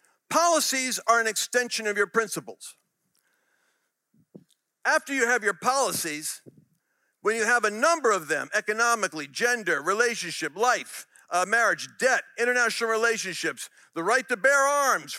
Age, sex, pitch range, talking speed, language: 50-69, male, 200-255 Hz, 130 wpm, English